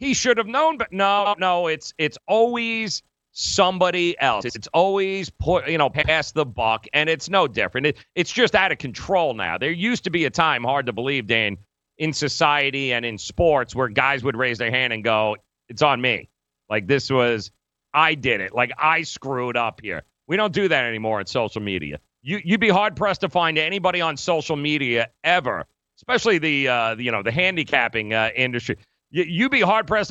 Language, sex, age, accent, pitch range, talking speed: English, male, 40-59, American, 120-180 Hz, 195 wpm